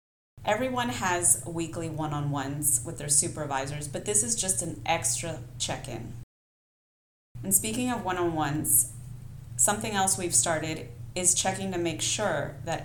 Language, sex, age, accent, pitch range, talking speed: English, female, 30-49, American, 120-165 Hz, 130 wpm